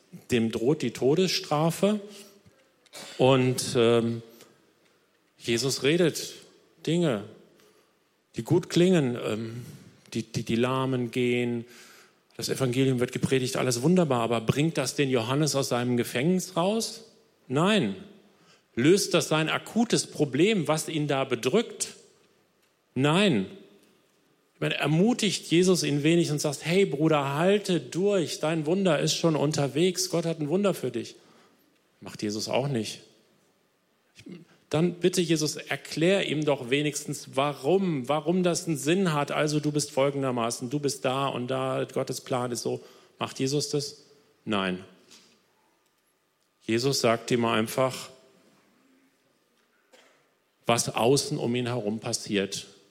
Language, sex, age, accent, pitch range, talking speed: German, male, 40-59, German, 120-160 Hz, 125 wpm